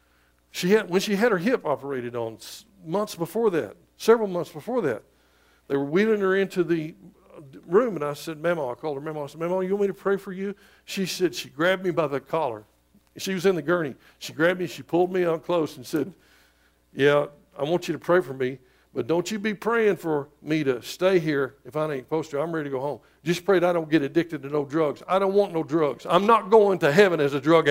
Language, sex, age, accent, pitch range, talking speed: English, male, 60-79, American, 135-180 Hz, 250 wpm